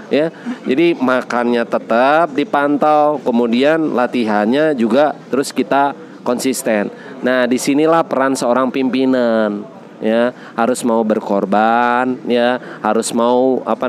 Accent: native